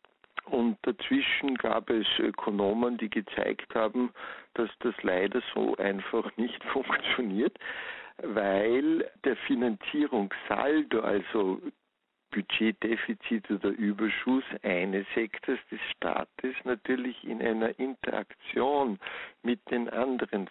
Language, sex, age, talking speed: German, male, 60-79, 95 wpm